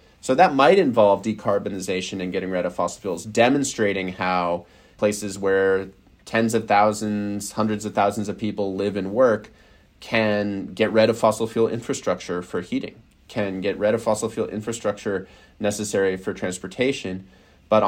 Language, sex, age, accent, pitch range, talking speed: English, male, 30-49, American, 95-115 Hz, 155 wpm